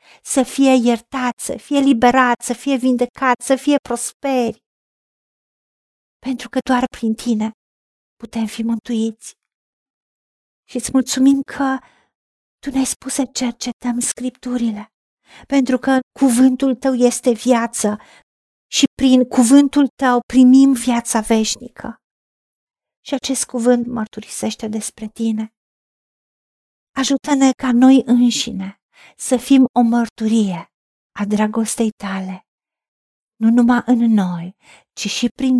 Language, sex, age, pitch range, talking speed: Romanian, female, 50-69, 220-260 Hz, 115 wpm